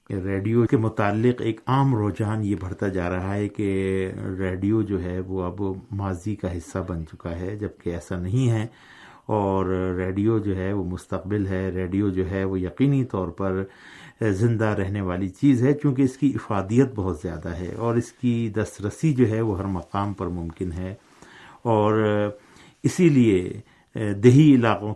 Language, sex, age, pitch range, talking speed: Urdu, male, 50-69, 95-115 Hz, 170 wpm